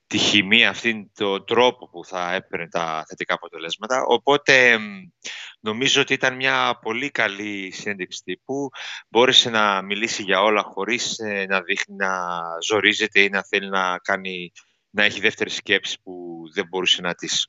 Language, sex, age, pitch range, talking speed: Greek, male, 30-49, 100-135 Hz, 150 wpm